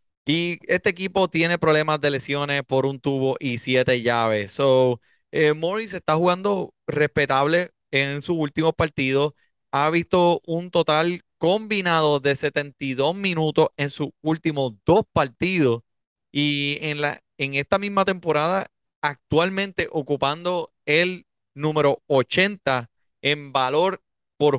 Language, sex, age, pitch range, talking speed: Spanish, male, 30-49, 135-160 Hz, 125 wpm